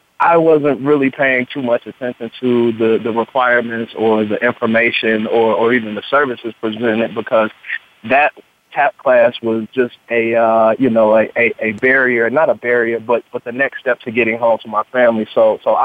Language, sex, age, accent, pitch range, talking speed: English, male, 20-39, American, 110-125 Hz, 190 wpm